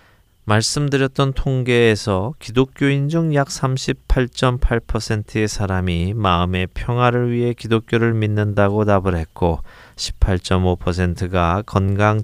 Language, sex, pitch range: Korean, male, 90-120 Hz